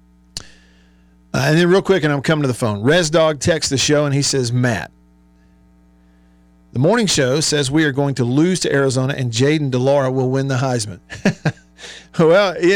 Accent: American